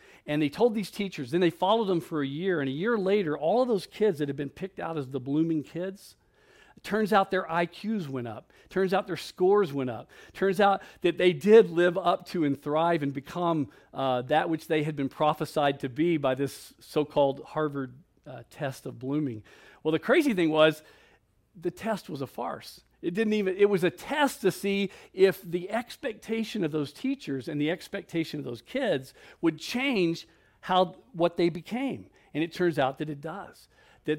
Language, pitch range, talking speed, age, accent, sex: English, 145-190 Hz, 210 wpm, 50-69, American, male